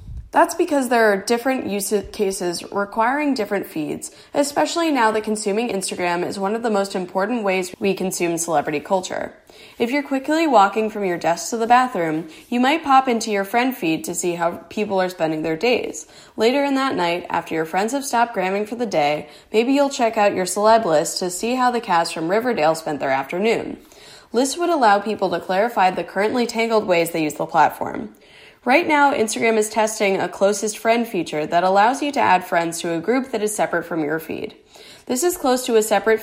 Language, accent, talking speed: English, American, 205 wpm